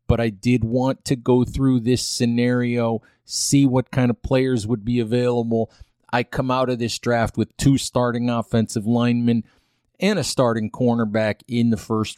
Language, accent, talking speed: English, American, 170 wpm